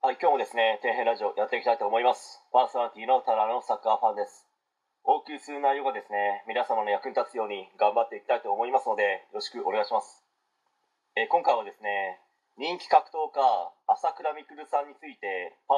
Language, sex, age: Japanese, male, 30-49